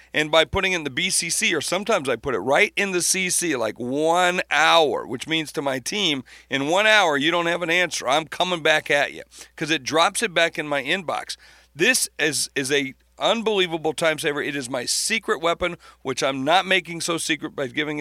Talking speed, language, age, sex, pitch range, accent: 215 wpm, English, 50-69, male, 145-180 Hz, American